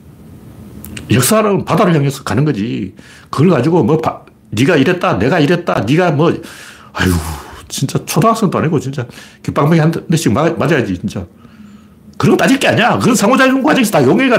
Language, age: Korean, 60-79